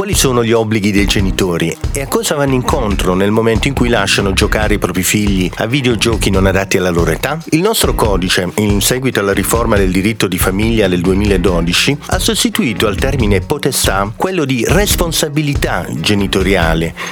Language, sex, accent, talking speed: Italian, male, native, 170 wpm